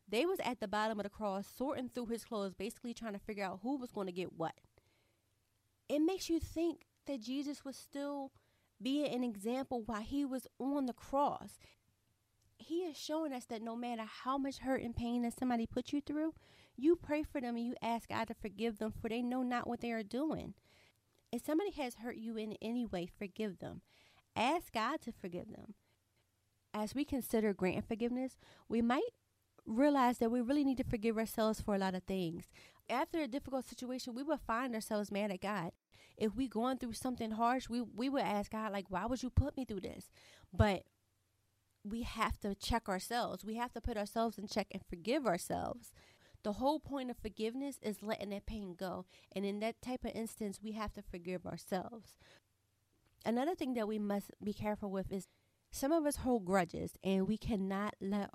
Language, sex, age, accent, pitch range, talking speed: English, female, 30-49, American, 200-255 Hz, 200 wpm